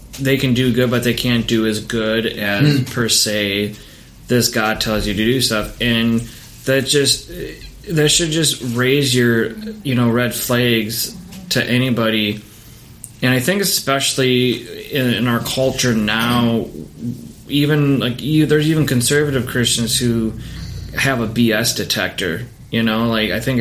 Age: 20-39